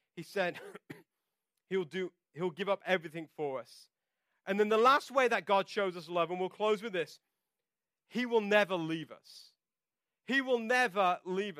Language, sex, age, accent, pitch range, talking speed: English, male, 40-59, British, 165-215 Hz, 175 wpm